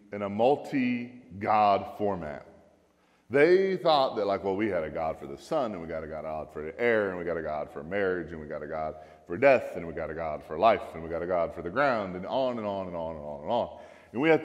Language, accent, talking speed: English, American, 275 wpm